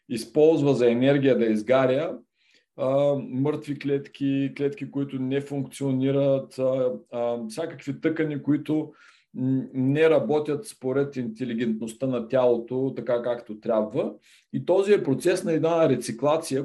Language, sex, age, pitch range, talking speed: Bulgarian, male, 40-59, 125-155 Hz, 120 wpm